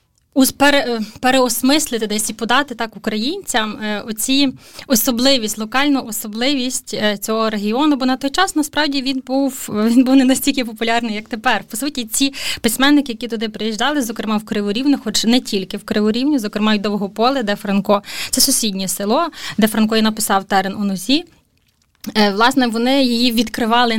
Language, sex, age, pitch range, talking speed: Ukrainian, female, 20-39, 215-265 Hz, 155 wpm